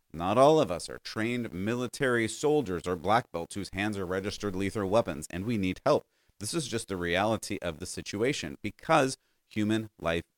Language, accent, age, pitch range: English, American, 30-49, 90-120 Hz